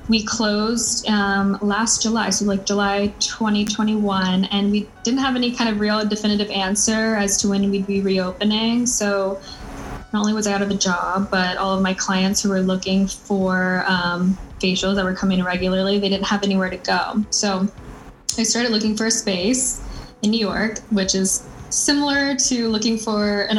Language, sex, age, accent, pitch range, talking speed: English, female, 10-29, American, 190-215 Hz, 185 wpm